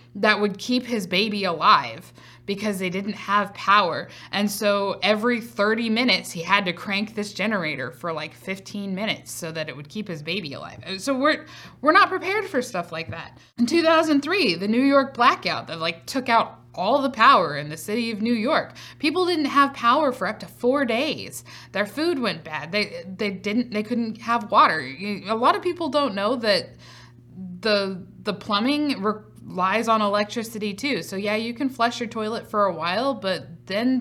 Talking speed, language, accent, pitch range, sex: 195 wpm, English, American, 190-255 Hz, female